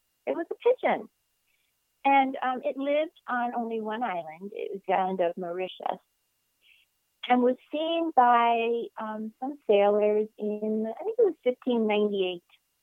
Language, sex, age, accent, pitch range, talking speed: English, female, 40-59, American, 185-235 Hz, 145 wpm